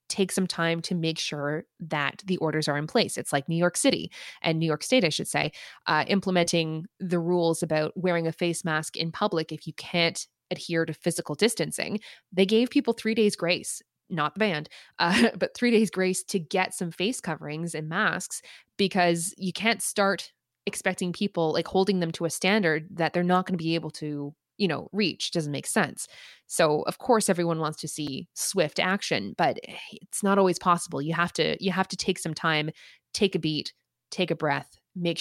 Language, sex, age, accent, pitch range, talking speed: English, female, 20-39, American, 155-195 Hz, 205 wpm